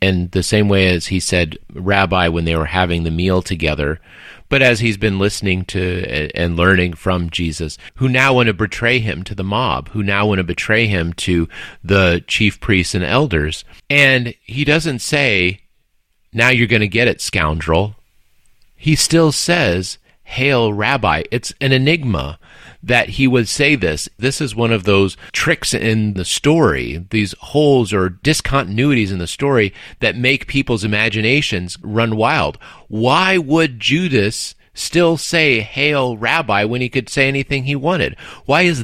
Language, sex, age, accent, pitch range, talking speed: English, male, 40-59, American, 95-140 Hz, 165 wpm